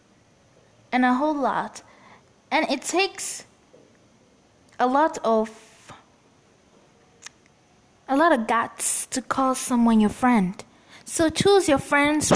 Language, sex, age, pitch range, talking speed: English, female, 20-39, 215-310 Hz, 110 wpm